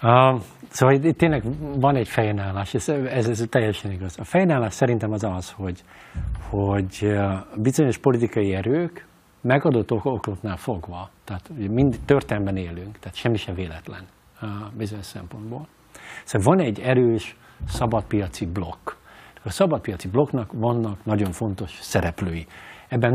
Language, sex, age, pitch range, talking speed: Hungarian, male, 50-69, 95-135 Hz, 130 wpm